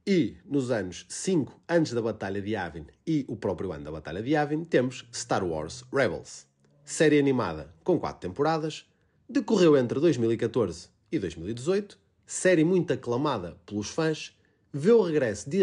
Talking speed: 155 wpm